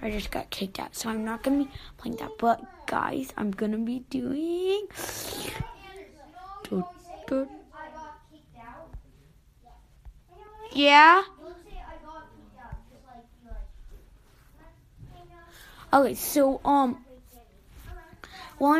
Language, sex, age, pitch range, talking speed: English, female, 20-39, 235-310 Hz, 75 wpm